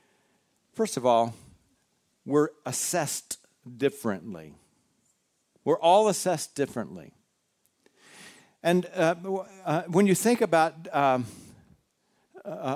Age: 50-69